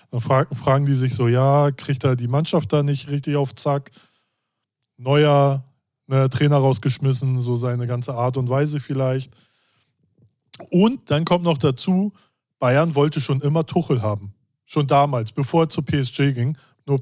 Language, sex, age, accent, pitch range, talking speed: German, male, 20-39, German, 130-160 Hz, 160 wpm